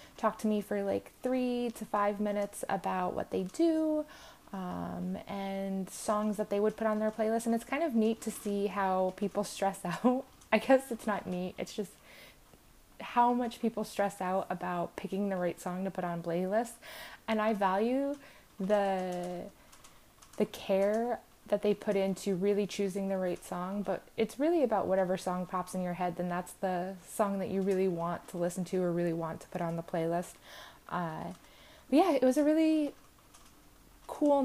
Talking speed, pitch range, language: 185 wpm, 185-220 Hz, English